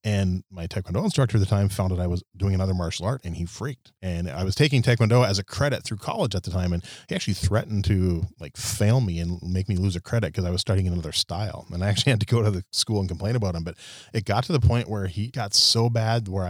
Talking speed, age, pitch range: 275 wpm, 30-49, 90-110 Hz